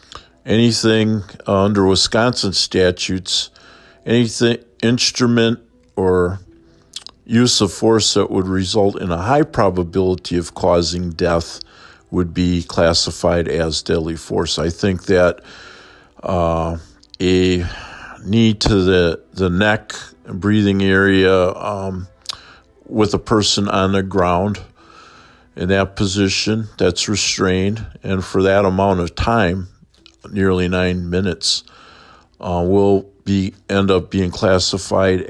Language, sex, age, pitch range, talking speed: English, male, 50-69, 90-100 Hz, 115 wpm